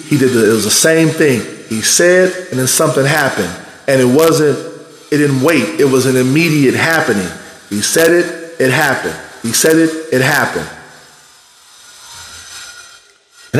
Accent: American